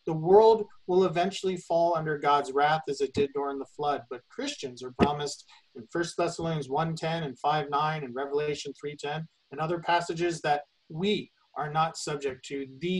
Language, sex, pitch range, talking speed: English, male, 145-190 Hz, 170 wpm